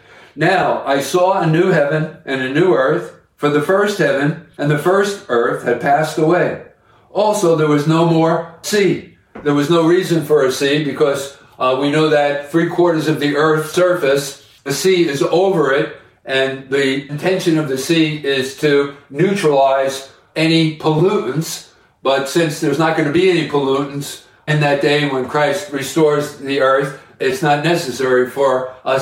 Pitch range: 140-165 Hz